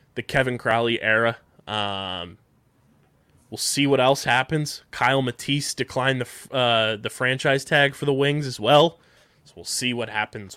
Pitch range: 115-145 Hz